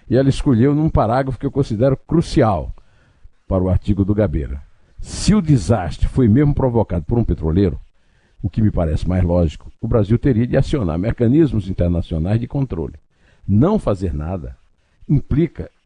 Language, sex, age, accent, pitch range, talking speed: Portuguese, male, 60-79, Brazilian, 95-130 Hz, 160 wpm